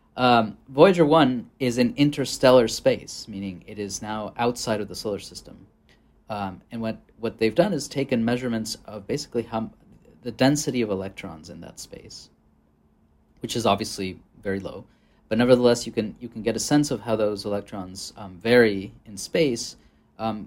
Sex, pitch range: male, 100-125 Hz